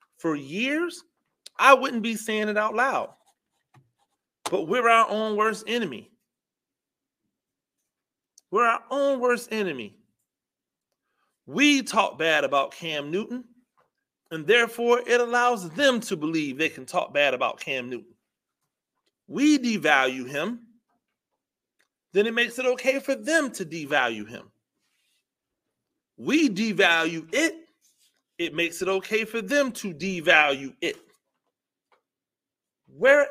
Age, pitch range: 30-49, 195-260 Hz